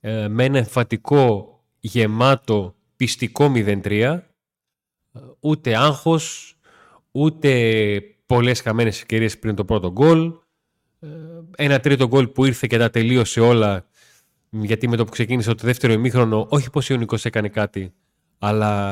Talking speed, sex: 125 wpm, male